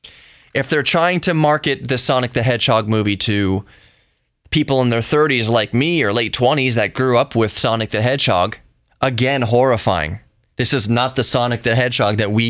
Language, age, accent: English, 20-39, American